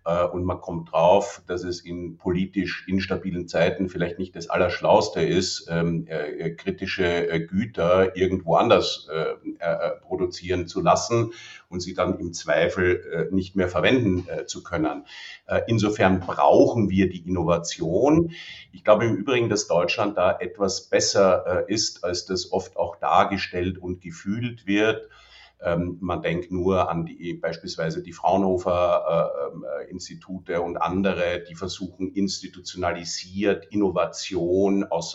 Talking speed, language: 135 wpm, German